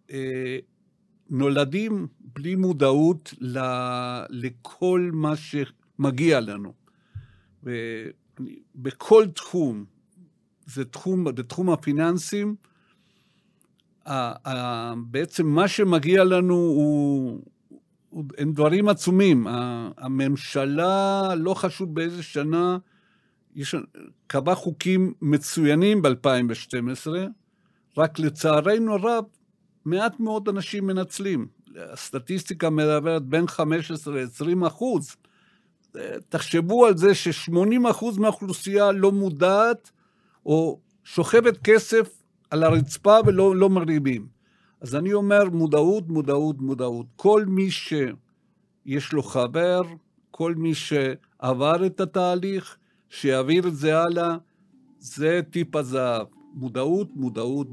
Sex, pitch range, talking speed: male, 140-195 Hz, 90 wpm